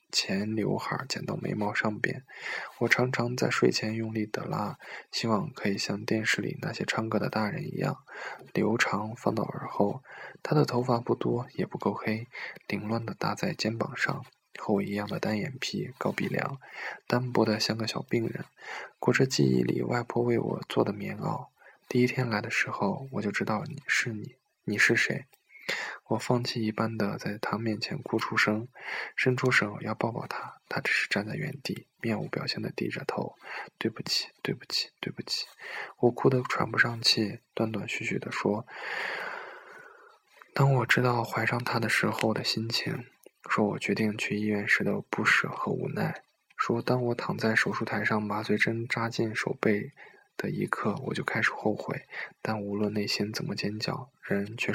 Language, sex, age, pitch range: Chinese, male, 20-39, 105-125 Hz